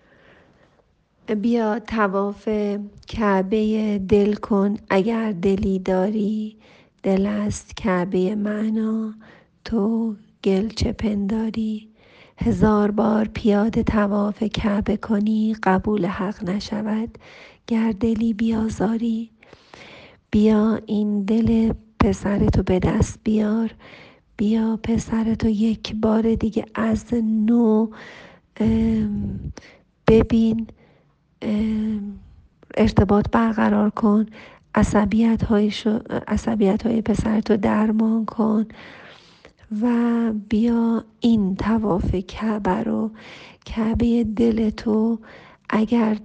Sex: female